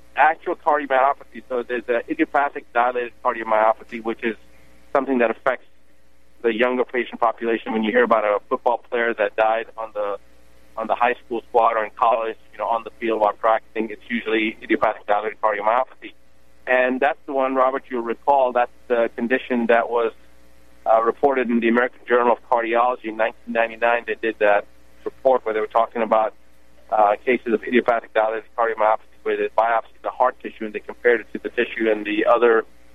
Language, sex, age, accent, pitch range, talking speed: English, male, 30-49, American, 105-125 Hz, 185 wpm